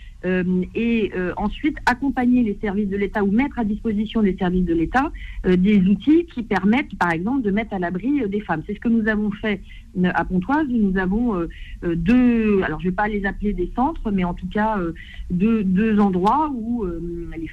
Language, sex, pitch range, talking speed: French, female, 180-230 Hz, 210 wpm